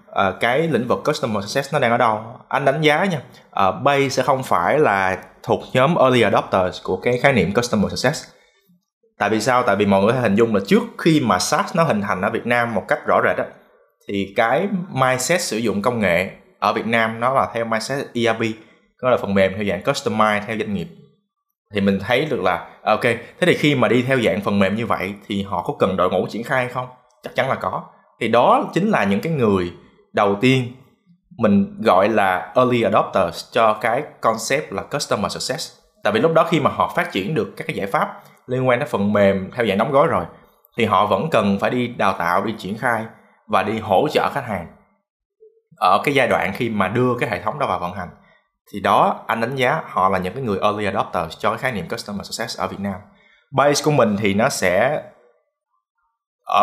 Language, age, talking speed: Vietnamese, 20-39, 225 wpm